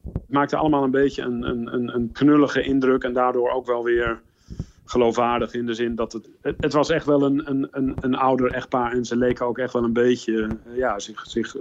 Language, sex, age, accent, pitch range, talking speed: Dutch, male, 40-59, Dutch, 115-135 Hz, 210 wpm